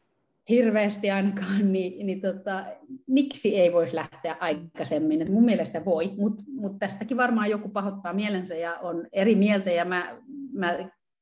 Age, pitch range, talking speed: 30-49, 165-205 Hz, 150 wpm